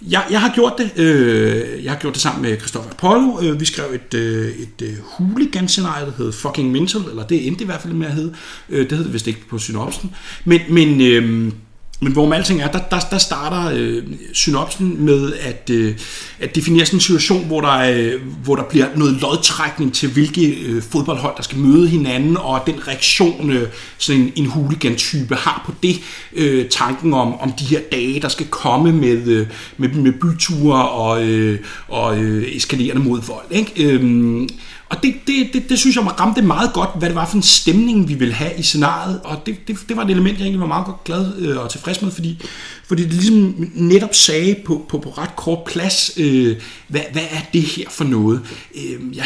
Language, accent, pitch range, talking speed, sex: Danish, native, 130-180 Hz, 205 wpm, male